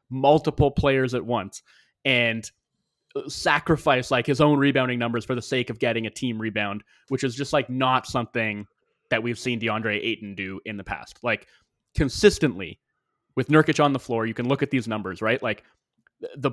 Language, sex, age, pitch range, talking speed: English, male, 20-39, 115-145 Hz, 180 wpm